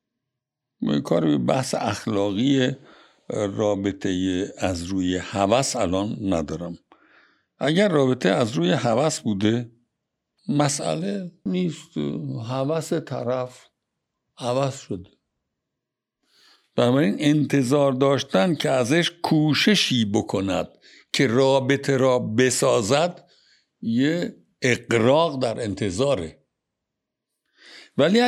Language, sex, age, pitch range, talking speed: Persian, male, 60-79, 120-160 Hz, 85 wpm